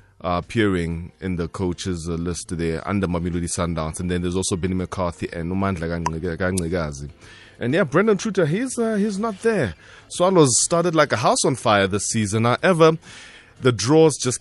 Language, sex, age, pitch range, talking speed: English, male, 20-39, 95-140 Hz, 175 wpm